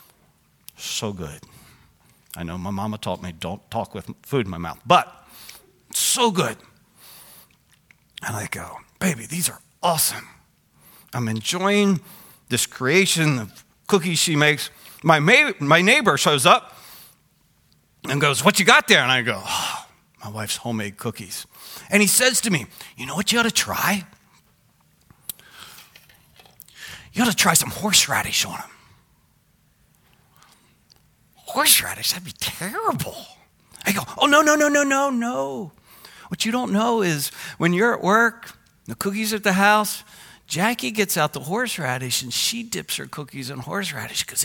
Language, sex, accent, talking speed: English, male, American, 150 wpm